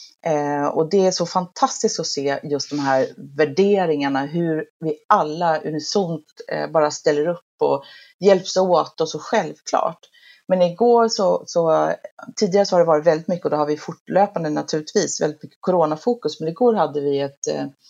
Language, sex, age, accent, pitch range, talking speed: Swedish, female, 30-49, native, 155-215 Hz, 165 wpm